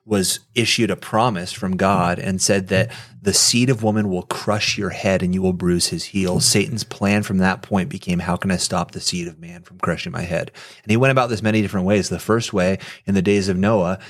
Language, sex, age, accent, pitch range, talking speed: English, male, 30-49, American, 95-110 Hz, 245 wpm